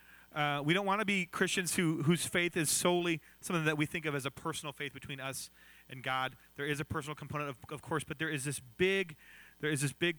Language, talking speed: English, 245 wpm